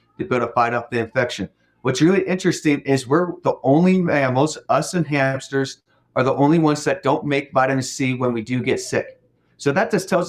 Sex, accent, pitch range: male, American, 120-150 Hz